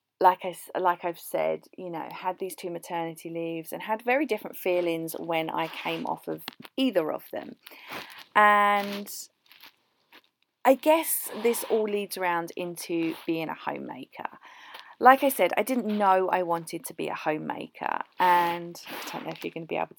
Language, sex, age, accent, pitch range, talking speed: English, female, 40-59, British, 170-220 Hz, 170 wpm